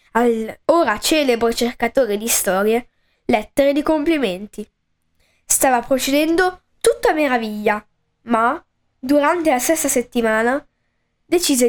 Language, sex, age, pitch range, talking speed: Italian, female, 10-29, 230-315 Hz, 100 wpm